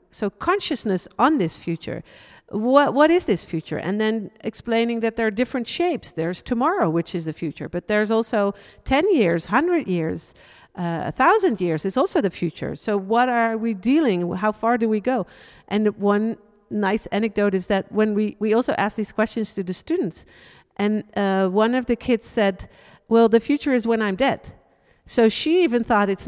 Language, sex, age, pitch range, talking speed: Finnish, female, 50-69, 195-245 Hz, 195 wpm